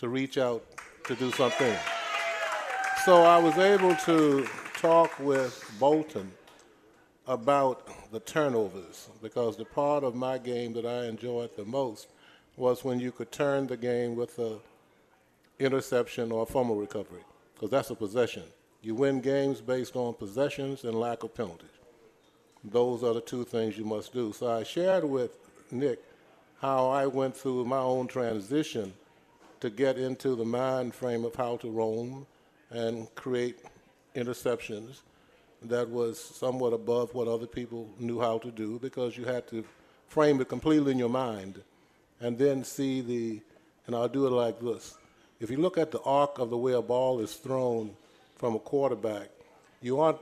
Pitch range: 115-135 Hz